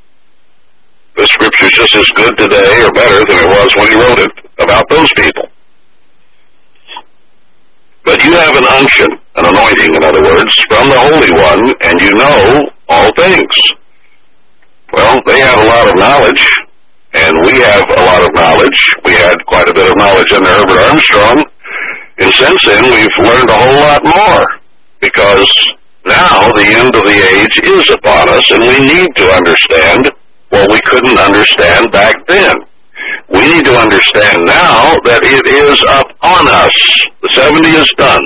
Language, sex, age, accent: English, male, 60-79, American